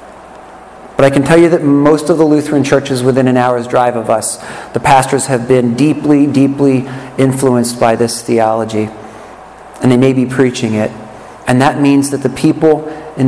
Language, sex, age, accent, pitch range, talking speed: English, male, 50-69, American, 125-150 Hz, 180 wpm